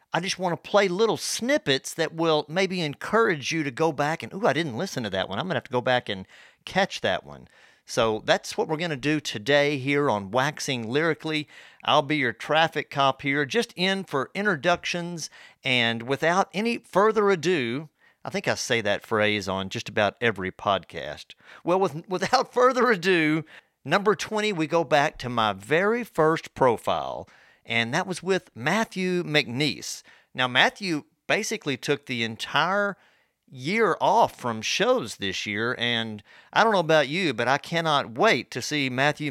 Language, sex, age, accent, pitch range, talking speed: English, male, 50-69, American, 120-170 Hz, 180 wpm